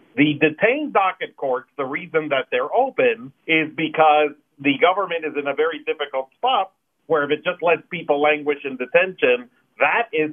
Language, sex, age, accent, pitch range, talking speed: English, male, 50-69, American, 140-210 Hz, 175 wpm